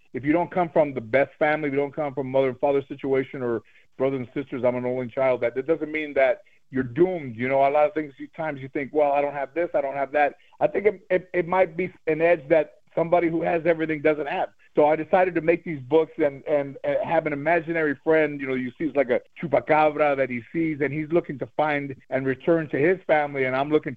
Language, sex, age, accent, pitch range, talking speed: English, male, 50-69, American, 130-155 Hz, 260 wpm